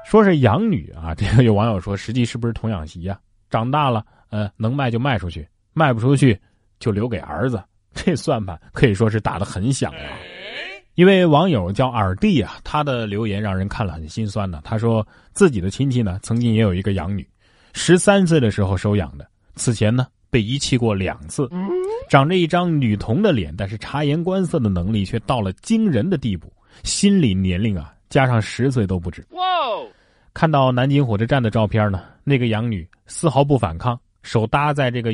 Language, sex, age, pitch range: Chinese, male, 20-39, 100-140 Hz